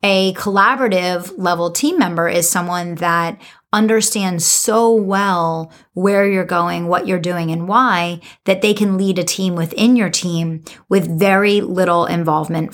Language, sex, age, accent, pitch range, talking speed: English, female, 30-49, American, 165-195 Hz, 150 wpm